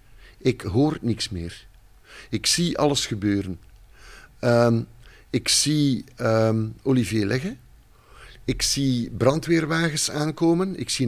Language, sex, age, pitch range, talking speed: Dutch, male, 50-69, 110-140 Hz, 95 wpm